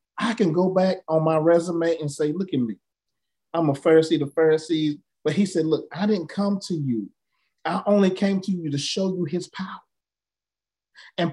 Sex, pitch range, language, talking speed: male, 165-210 Hz, English, 195 wpm